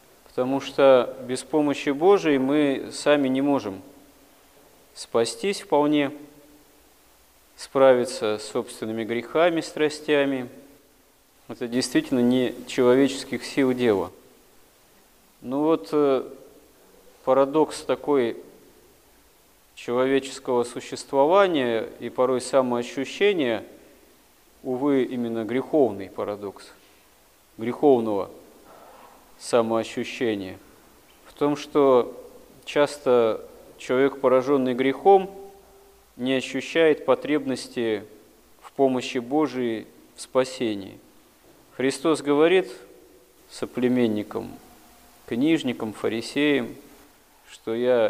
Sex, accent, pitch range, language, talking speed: male, native, 120-150 Hz, Russian, 75 wpm